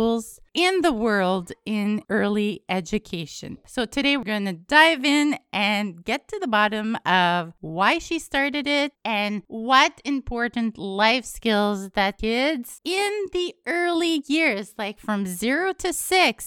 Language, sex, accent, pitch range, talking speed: English, female, American, 190-255 Hz, 140 wpm